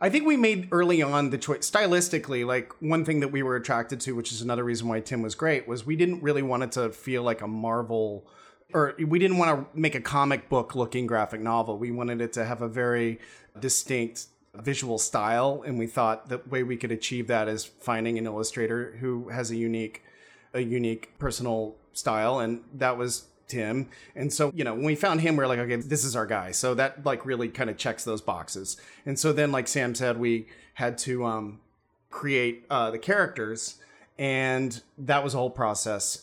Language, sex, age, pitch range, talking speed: English, male, 30-49, 115-145 Hz, 210 wpm